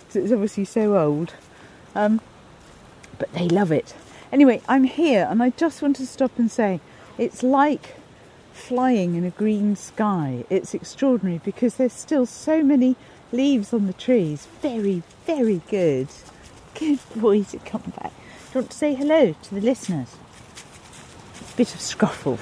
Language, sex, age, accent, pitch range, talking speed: English, female, 50-69, British, 180-255 Hz, 155 wpm